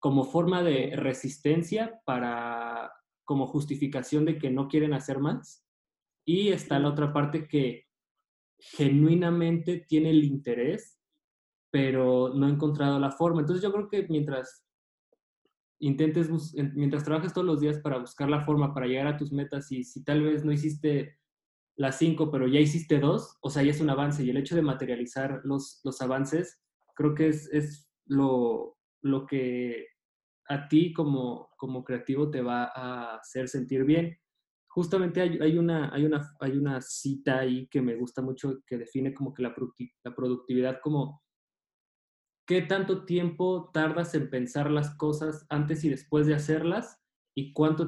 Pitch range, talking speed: 135-155 Hz, 160 wpm